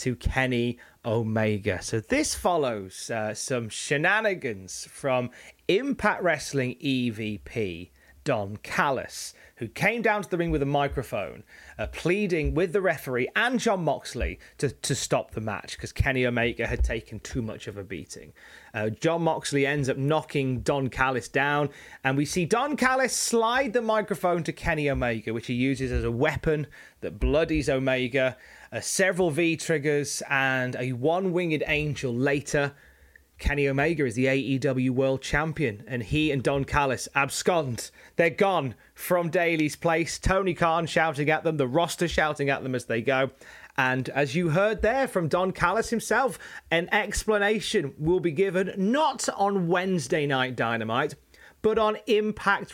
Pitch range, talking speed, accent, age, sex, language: 130-180 Hz, 155 wpm, British, 30-49, male, English